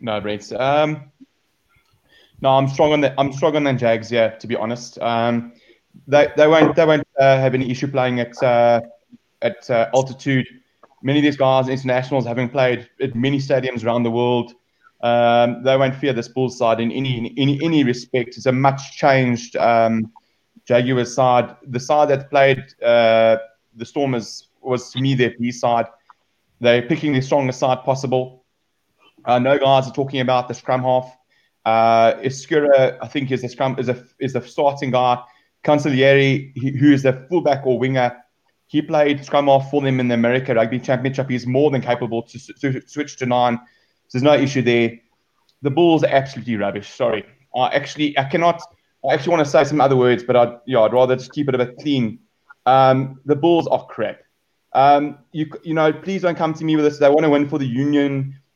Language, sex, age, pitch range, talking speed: English, male, 20-39, 120-140 Hz, 195 wpm